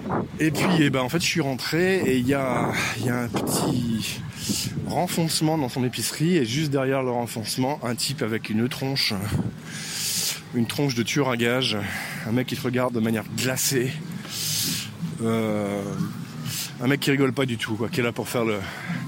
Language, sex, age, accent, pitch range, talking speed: French, male, 20-39, French, 120-155 Hz, 185 wpm